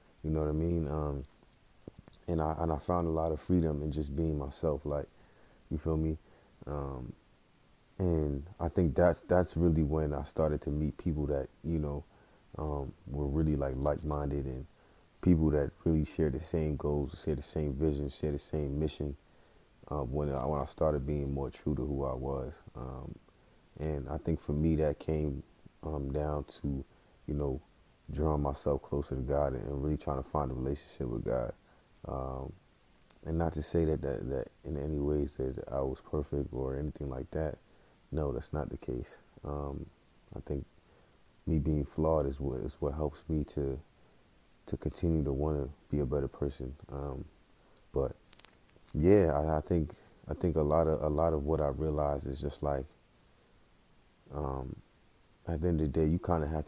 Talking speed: 190 wpm